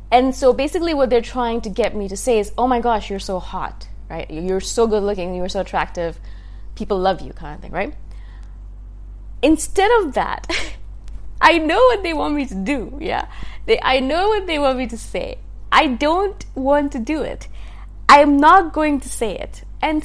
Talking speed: 200 wpm